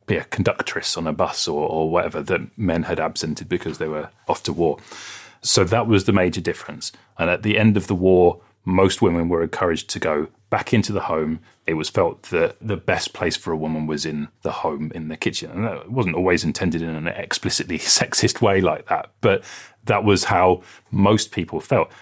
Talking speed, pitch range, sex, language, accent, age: 215 wpm, 85-105 Hz, male, English, British, 30-49